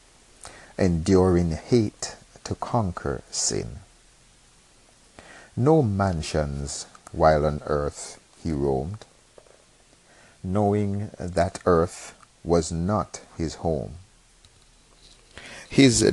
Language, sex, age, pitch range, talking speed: English, male, 50-69, 80-110 Hz, 75 wpm